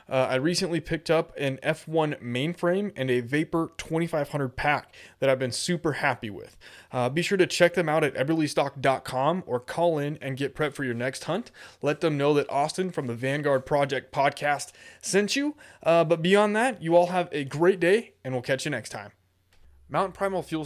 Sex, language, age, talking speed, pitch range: male, English, 20-39, 200 wpm, 130-170 Hz